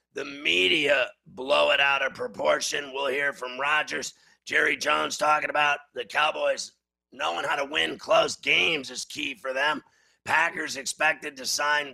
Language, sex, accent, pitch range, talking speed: English, male, American, 135-150 Hz, 155 wpm